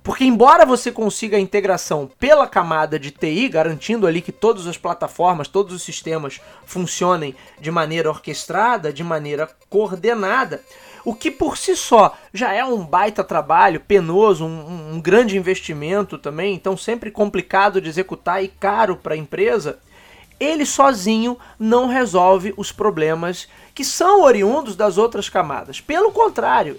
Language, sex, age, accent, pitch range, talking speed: Portuguese, male, 20-39, Brazilian, 175-250 Hz, 150 wpm